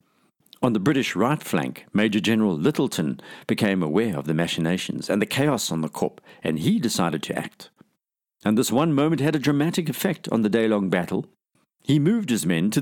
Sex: male